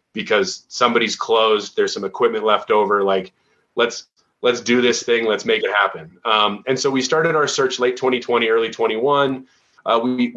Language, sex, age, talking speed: English, male, 30-49, 180 wpm